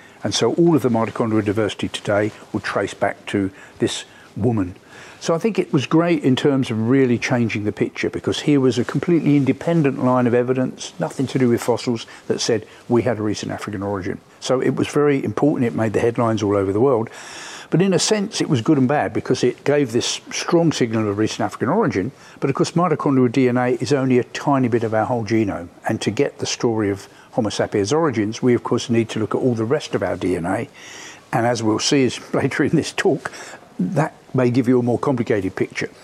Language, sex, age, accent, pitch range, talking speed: English, male, 60-79, British, 110-140 Hz, 220 wpm